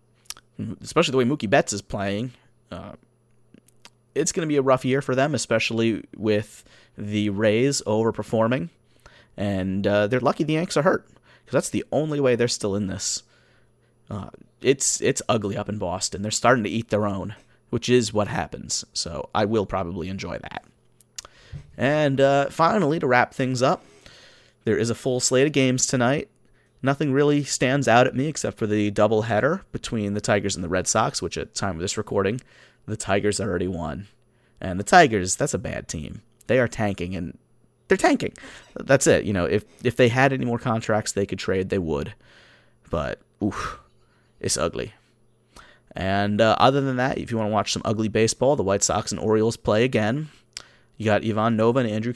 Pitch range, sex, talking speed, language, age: 105-130 Hz, male, 190 wpm, English, 30-49